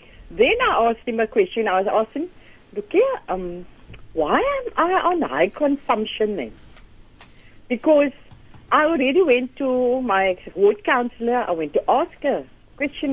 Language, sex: English, female